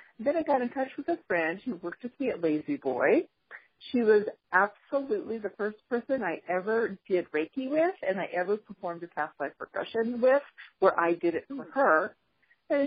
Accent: American